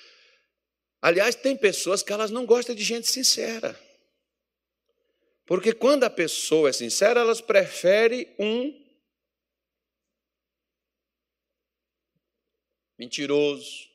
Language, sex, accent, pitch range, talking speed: Portuguese, male, Brazilian, 180-285 Hz, 85 wpm